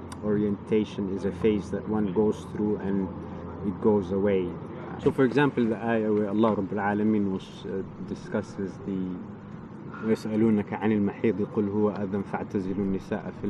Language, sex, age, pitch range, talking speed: English, male, 30-49, 100-115 Hz, 100 wpm